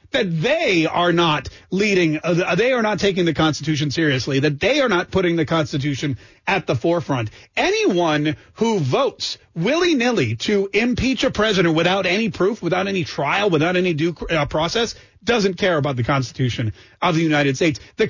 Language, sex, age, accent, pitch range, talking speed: English, male, 40-59, American, 155-220 Hz, 170 wpm